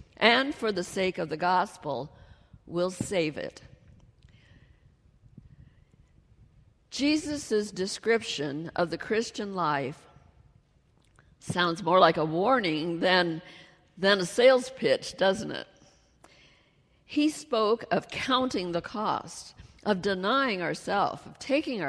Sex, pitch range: female, 180-245 Hz